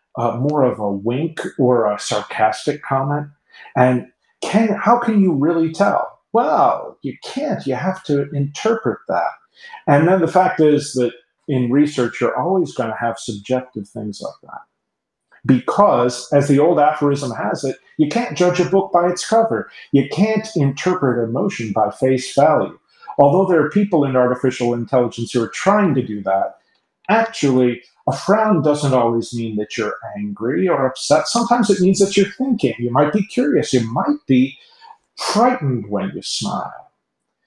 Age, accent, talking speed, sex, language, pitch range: 40-59, American, 165 wpm, male, English, 120-180 Hz